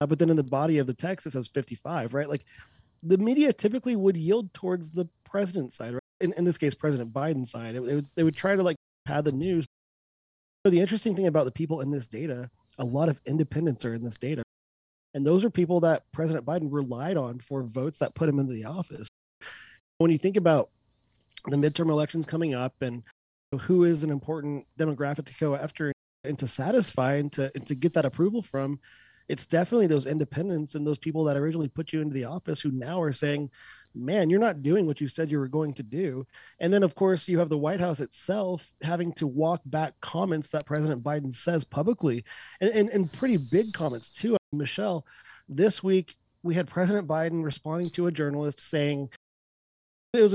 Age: 30-49